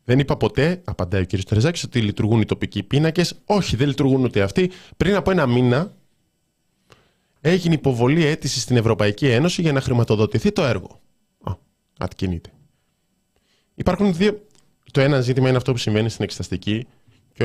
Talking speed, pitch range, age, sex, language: 155 wpm, 95-135 Hz, 20-39, male, Greek